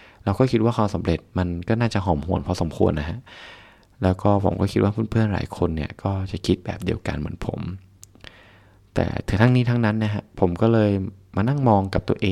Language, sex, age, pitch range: Thai, male, 20-39, 90-110 Hz